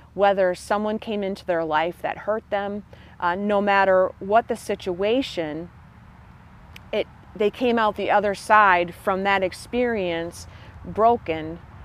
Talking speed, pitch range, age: 130 wpm, 180-210 Hz, 40-59